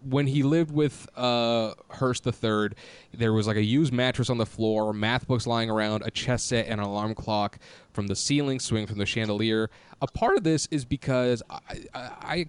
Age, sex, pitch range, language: 20-39, male, 105-130 Hz, English